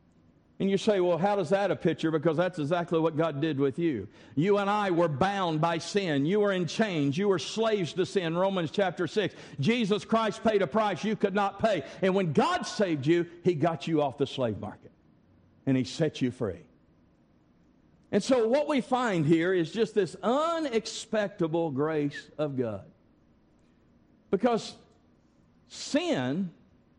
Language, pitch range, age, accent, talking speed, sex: English, 165-225 Hz, 50-69, American, 170 wpm, male